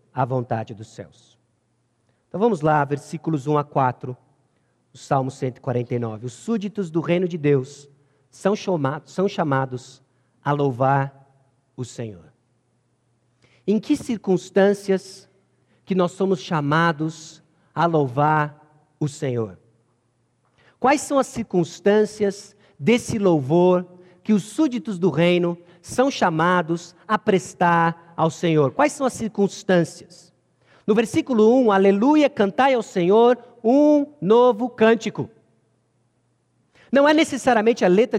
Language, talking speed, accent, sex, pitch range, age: Portuguese, 115 wpm, Brazilian, male, 140-220 Hz, 50-69